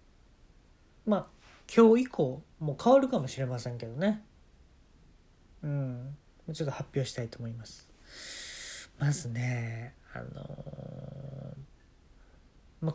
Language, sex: Japanese, male